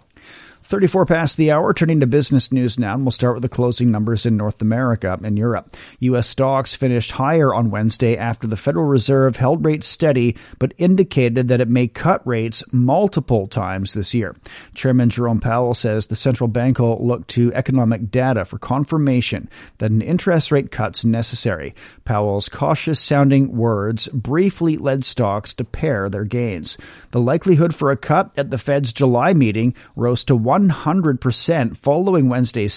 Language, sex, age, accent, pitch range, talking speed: English, male, 40-59, American, 115-140 Hz, 165 wpm